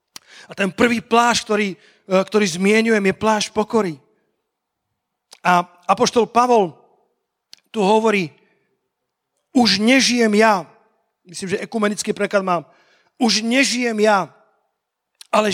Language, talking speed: Slovak, 105 wpm